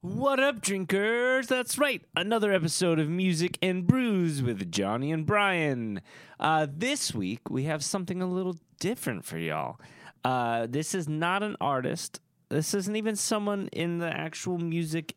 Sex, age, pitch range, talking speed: male, 30-49, 130-185 Hz, 155 wpm